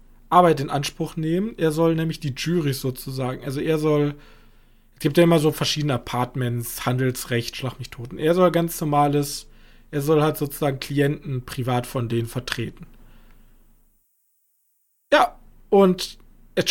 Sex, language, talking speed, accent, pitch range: male, German, 145 wpm, German, 145-190 Hz